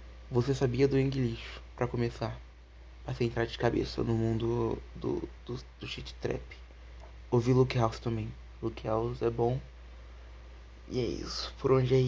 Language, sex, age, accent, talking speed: Portuguese, male, 20-39, Brazilian, 165 wpm